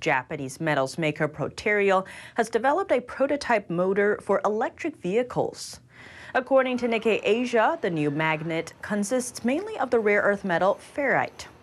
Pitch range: 155-235 Hz